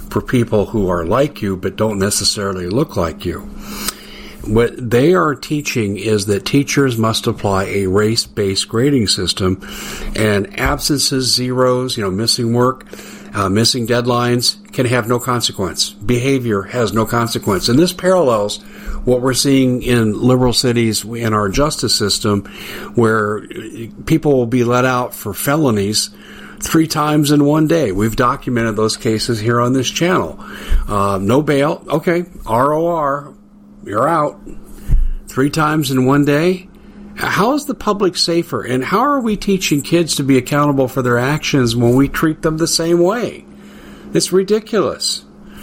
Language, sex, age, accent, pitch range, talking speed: English, male, 50-69, American, 110-145 Hz, 150 wpm